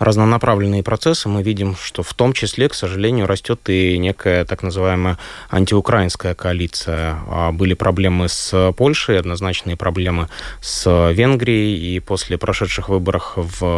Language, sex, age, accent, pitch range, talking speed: Russian, male, 20-39, native, 90-105 Hz, 130 wpm